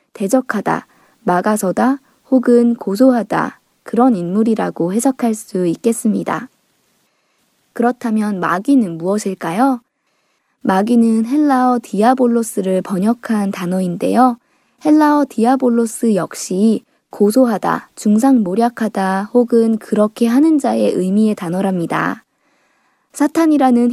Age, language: 20-39, Korean